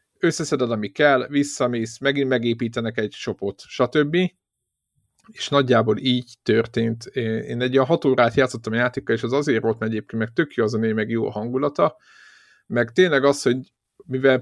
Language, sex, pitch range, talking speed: Hungarian, male, 115-140 Hz, 170 wpm